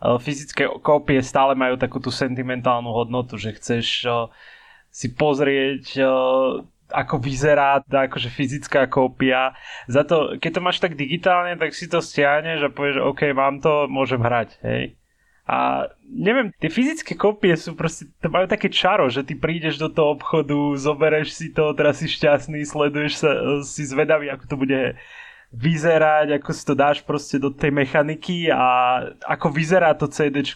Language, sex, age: Slovak, male, 20-39